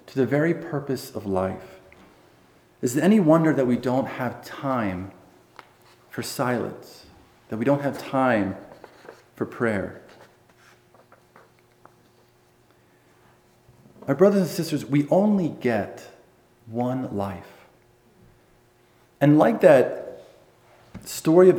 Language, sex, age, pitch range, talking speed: English, male, 40-59, 105-145 Hz, 105 wpm